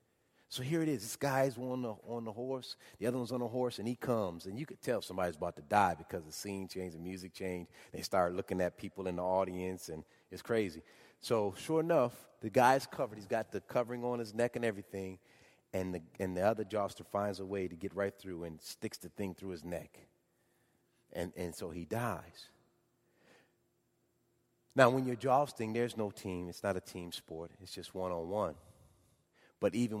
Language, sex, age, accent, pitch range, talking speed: English, male, 30-49, American, 90-115 Hz, 205 wpm